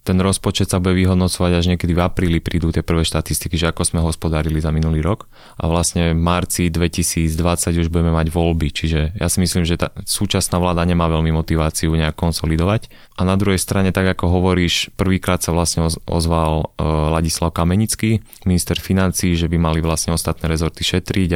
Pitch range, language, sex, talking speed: 85-90 Hz, Slovak, male, 180 wpm